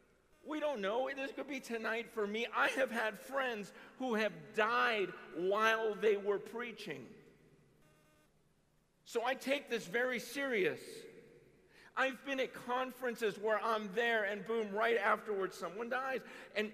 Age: 50-69